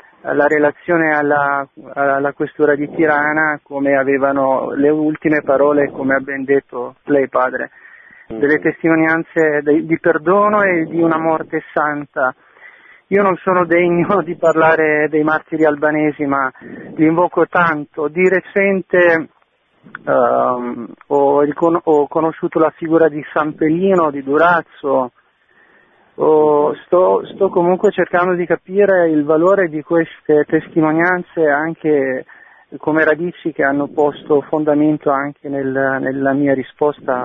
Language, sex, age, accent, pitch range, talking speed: Italian, male, 40-59, native, 145-170 Hz, 120 wpm